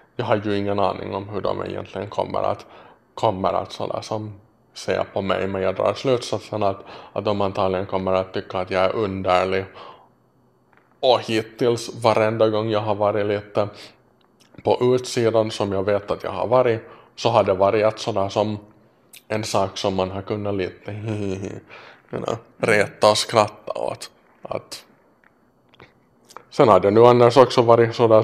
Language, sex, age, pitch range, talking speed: Finnish, male, 20-39, 100-115 Hz, 160 wpm